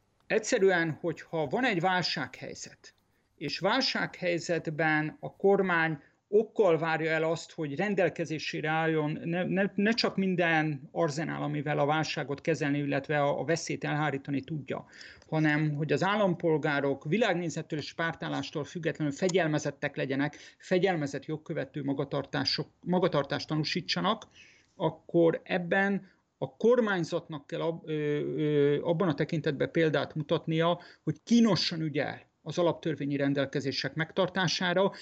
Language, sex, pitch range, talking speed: Hungarian, male, 145-175 Hz, 105 wpm